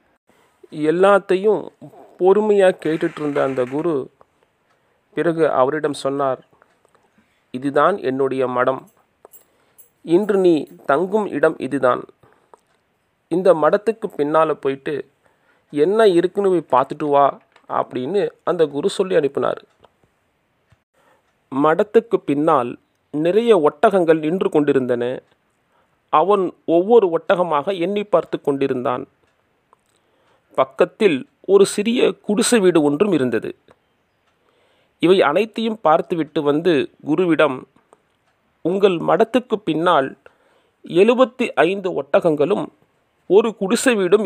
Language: Tamil